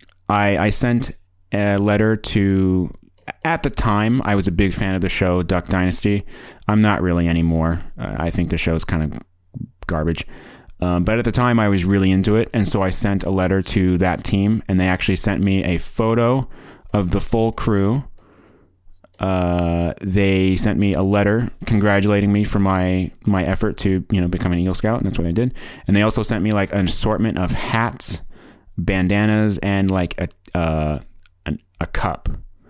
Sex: male